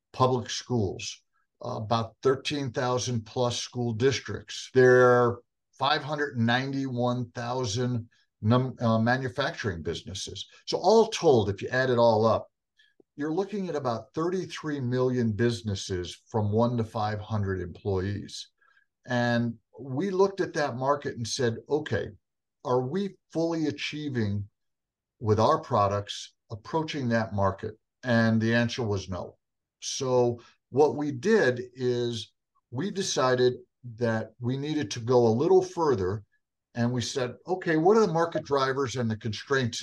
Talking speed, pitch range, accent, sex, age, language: 125 wpm, 115-145 Hz, American, male, 50-69, English